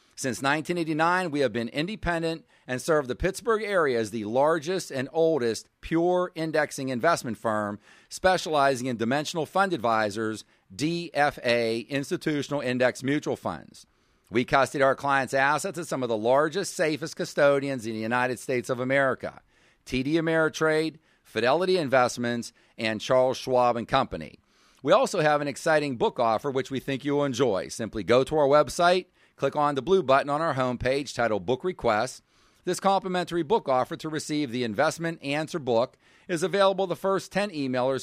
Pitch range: 130-170 Hz